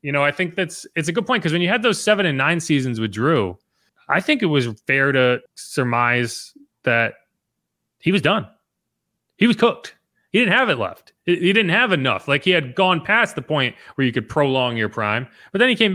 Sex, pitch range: male, 130-180 Hz